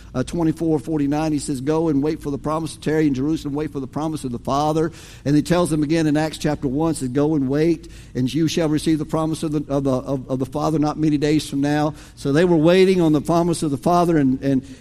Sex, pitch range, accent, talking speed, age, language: male, 135-175 Hz, American, 270 wpm, 50-69, English